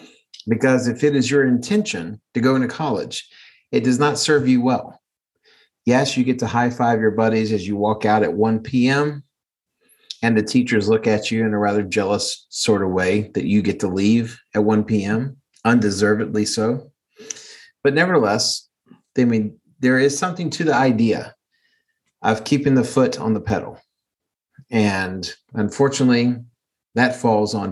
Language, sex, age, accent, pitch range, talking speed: English, male, 40-59, American, 105-140 Hz, 165 wpm